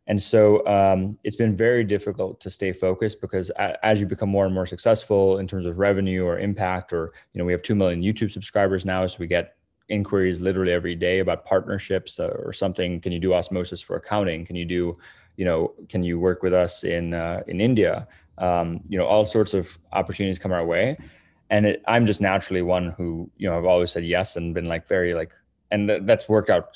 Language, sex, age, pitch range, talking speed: English, male, 20-39, 90-100 Hz, 220 wpm